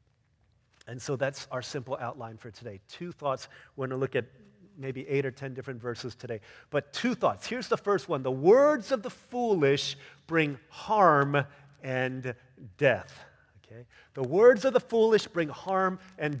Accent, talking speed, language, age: American, 170 wpm, English, 40-59